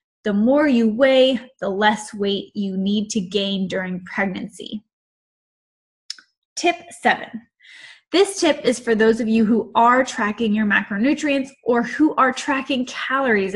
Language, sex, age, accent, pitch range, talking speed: English, female, 10-29, American, 205-260 Hz, 140 wpm